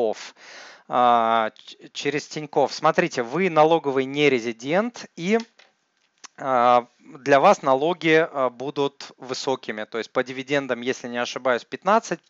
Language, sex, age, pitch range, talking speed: Russian, male, 30-49, 125-155 Hz, 100 wpm